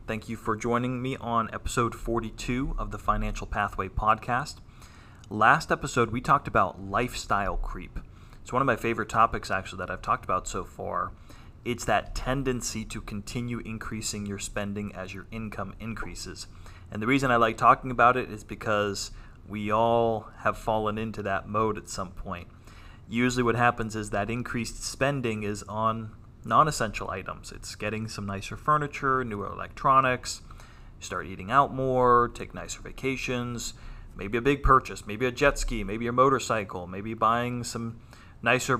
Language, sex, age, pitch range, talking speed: English, male, 30-49, 100-120 Hz, 160 wpm